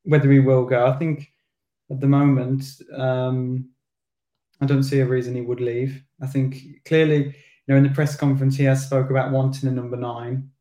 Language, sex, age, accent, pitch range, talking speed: English, male, 20-39, British, 125-135 Hz, 200 wpm